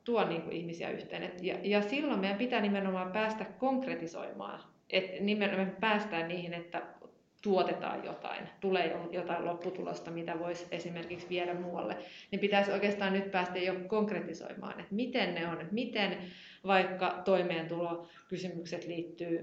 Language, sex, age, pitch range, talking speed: Finnish, female, 30-49, 170-195 Hz, 125 wpm